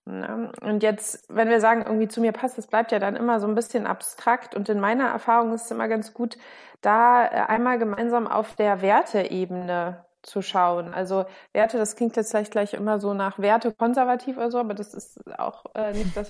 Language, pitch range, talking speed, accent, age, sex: German, 210-240 Hz, 200 wpm, German, 20-39, female